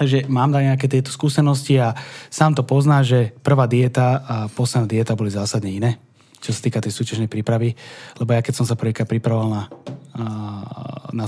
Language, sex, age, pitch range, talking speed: Czech, male, 20-39, 120-150 Hz, 180 wpm